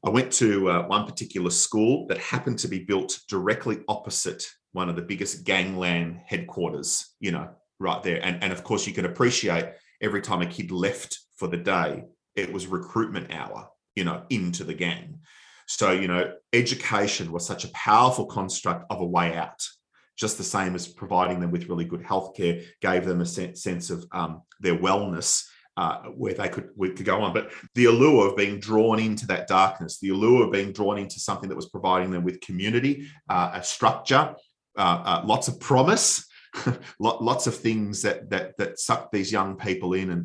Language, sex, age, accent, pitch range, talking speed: English, male, 30-49, Australian, 85-110 Hz, 195 wpm